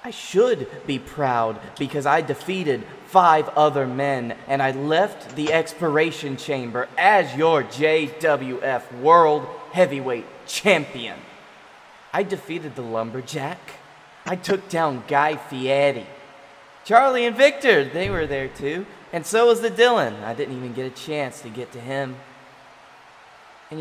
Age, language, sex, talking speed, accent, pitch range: 20-39, English, male, 135 wpm, American, 135-185 Hz